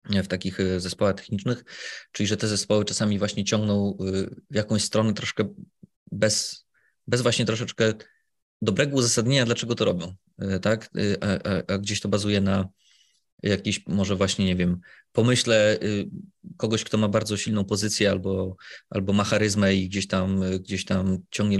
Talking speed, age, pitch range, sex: 150 wpm, 20-39, 100-110 Hz, male